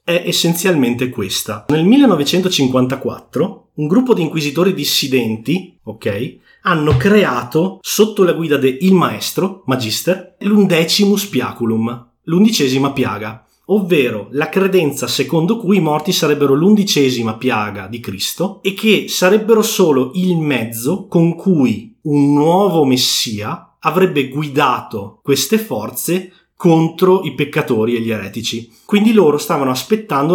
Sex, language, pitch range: male, Italian, 130-185 Hz